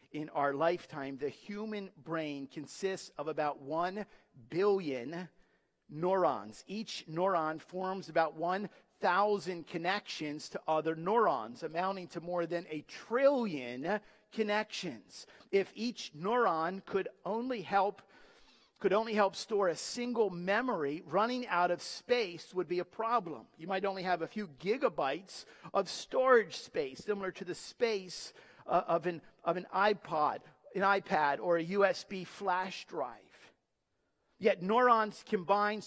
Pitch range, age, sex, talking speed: 175-220 Hz, 50-69, male, 130 wpm